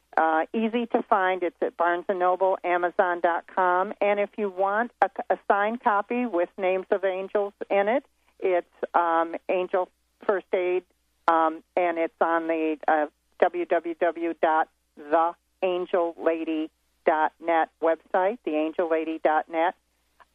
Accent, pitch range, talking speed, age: American, 170-210 Hz, 110 wpm, 50-69